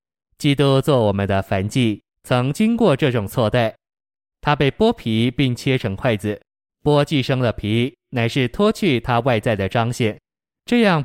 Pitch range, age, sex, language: 110-135 Hz, 20-39, male, Chinese